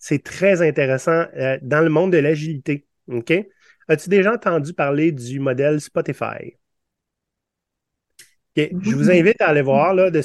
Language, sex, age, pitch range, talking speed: French, male, 30-49, 130-165 Hz, 150 wpm